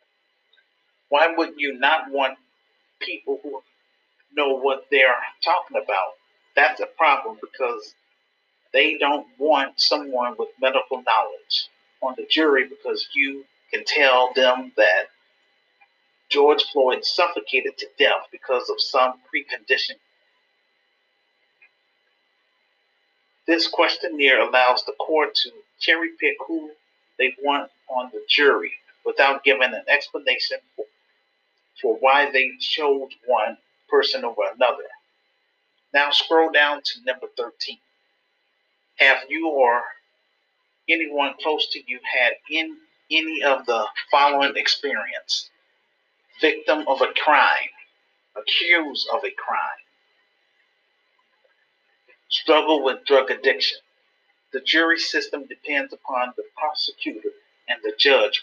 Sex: male